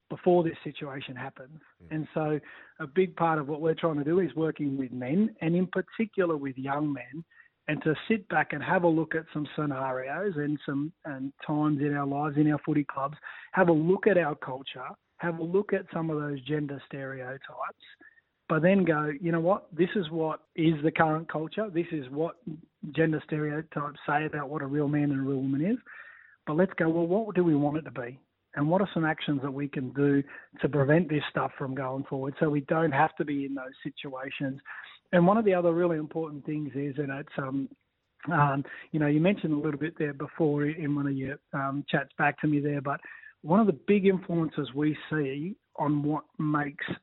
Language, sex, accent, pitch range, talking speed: English, male, Australian, 145-165 Hz, 215 wpm